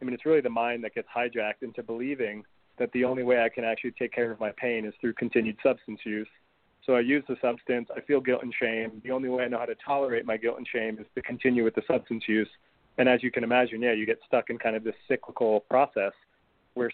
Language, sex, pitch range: English, male, 110-125 Hz